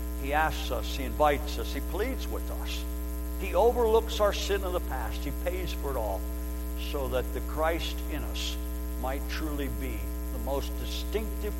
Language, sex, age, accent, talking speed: English, male, 60-79, American, 175 wpm